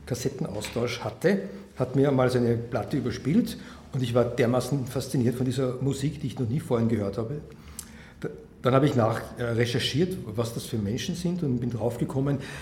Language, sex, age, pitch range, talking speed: English, male, 60-79, 120-160 Hz, 170 wpm